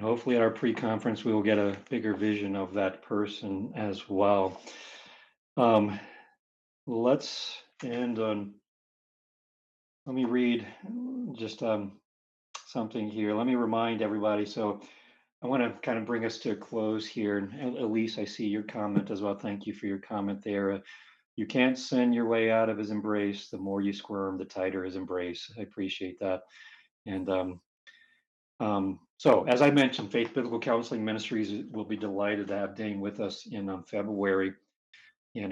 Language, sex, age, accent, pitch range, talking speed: English, male, 40-59, American, 100-120 Hz, 165 wpm